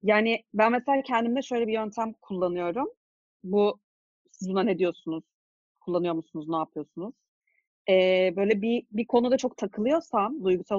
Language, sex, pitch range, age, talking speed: Turkish, female, 190-260 Hz, 40-59, 140 wpm